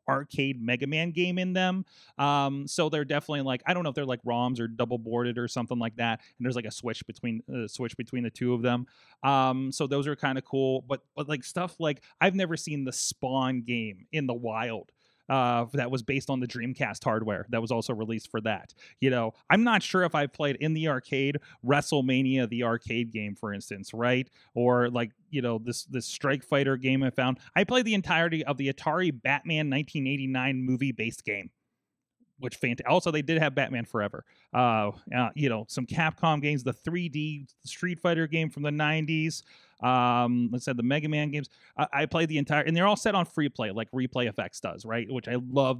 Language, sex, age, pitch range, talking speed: English, male, 30-49, 120-155 Hz, 215 wpm